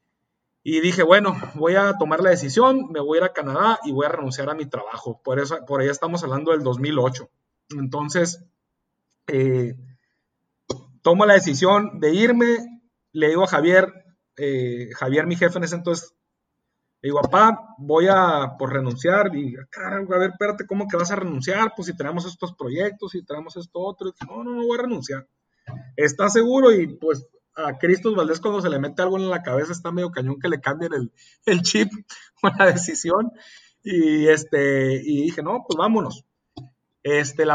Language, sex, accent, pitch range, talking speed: Spanish, male, Mexican, 140-185 Hz, 185 wpm